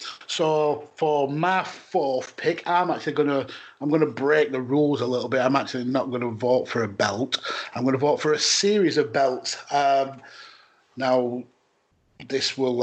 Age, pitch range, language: 30-49, 125-150 Hz, English